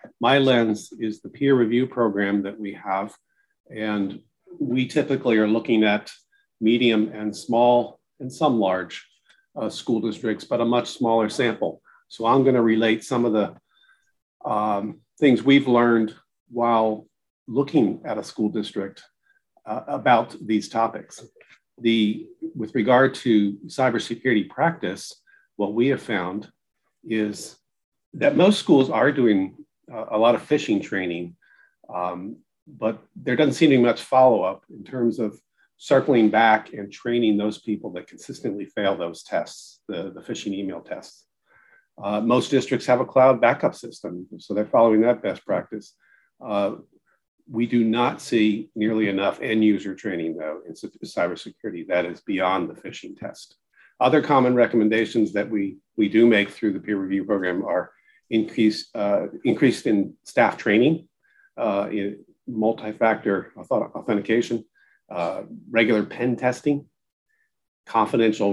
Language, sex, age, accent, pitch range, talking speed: English, male, 40-59, American, 105-130 Hz, 145 wpm